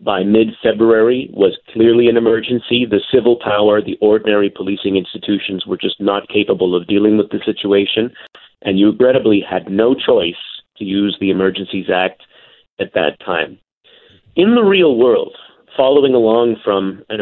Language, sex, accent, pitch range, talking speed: English, male, American, 100-125 Hz, 155 wpm